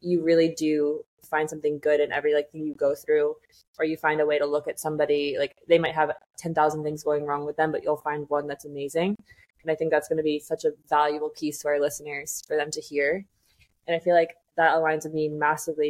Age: 20-39